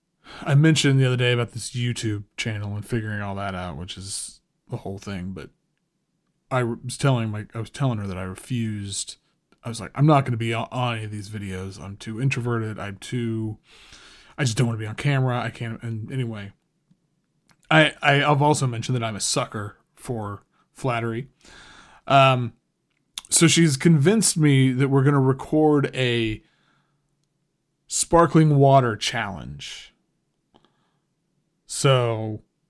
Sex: male